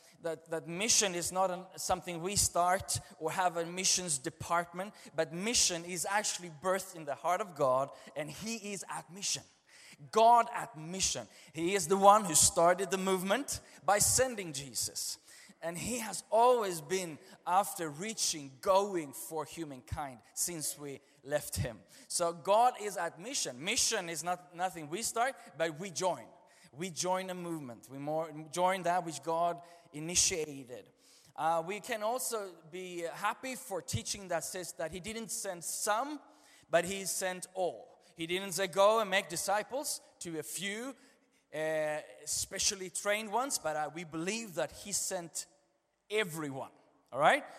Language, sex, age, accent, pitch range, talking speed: Swedish, male, 20-39, native, 165-200 Hz, 160 wpm